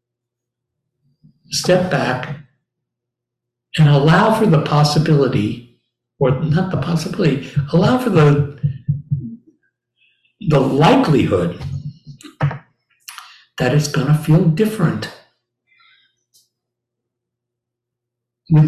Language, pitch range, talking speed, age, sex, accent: English, 120-160 Hz, 75 wpm, 60-79, male, American